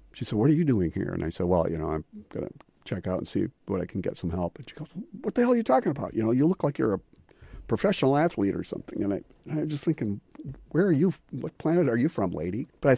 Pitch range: 95-135 Hz